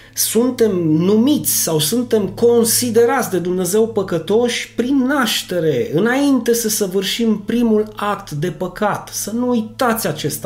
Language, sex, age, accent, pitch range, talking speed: Romanian, male, 30-49, native, 155-225 Hz, 120 wpm